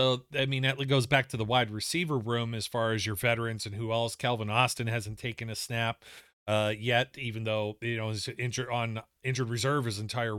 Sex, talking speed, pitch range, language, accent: male, 220 wpm, 110-130 Hz, English, American